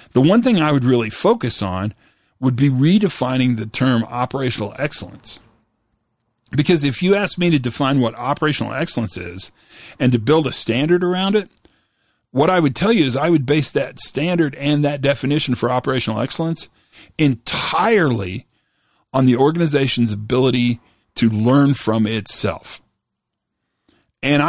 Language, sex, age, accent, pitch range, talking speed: English, male, 40-59, American, 115-150 Hz, 145 wpm